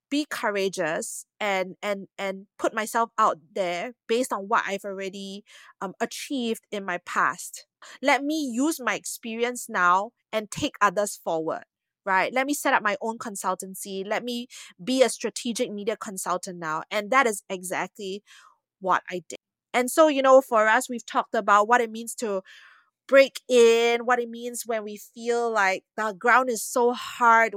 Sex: female